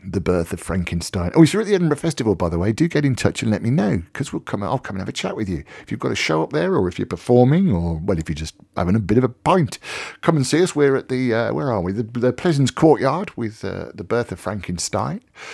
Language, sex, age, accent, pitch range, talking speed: English, male, 50-69, British, 95-135 Hz, 295 wpm